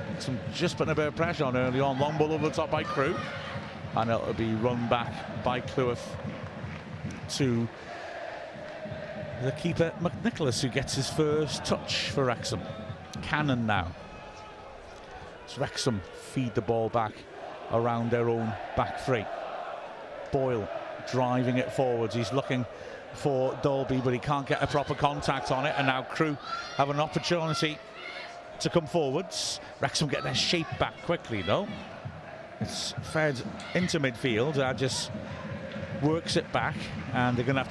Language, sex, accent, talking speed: English, male, British, 150 wpm